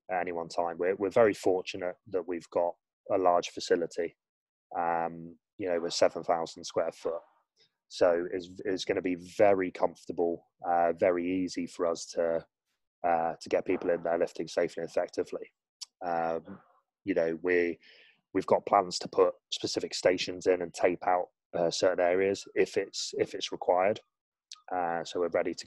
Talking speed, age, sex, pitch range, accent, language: 170 wpm, 20-39, male, 85-135 Hz, British, English